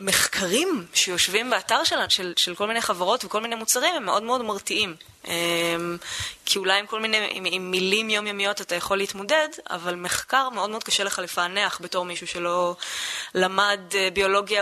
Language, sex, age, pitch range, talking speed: Hebrew, female, 20-39, 180-225 Hz, 165 wpm